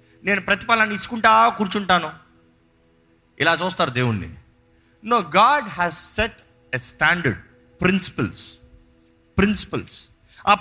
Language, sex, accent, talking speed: Telugu, male, native, 90 wpm